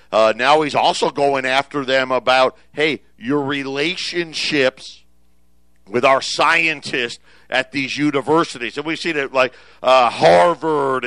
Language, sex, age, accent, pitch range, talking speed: English, male, 50-69, American, 120-155 Hz, 130 wpm